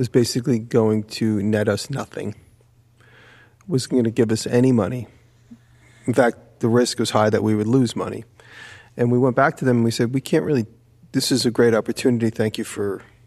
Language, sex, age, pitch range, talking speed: English, male, 40-59, 110-125 Hz, 205 wpm